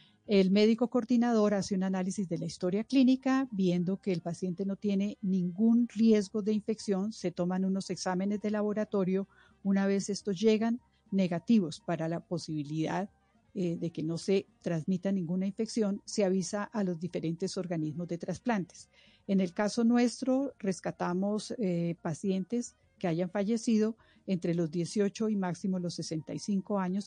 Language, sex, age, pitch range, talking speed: English, female, 50-69, 175-210 Hz, 150 wpm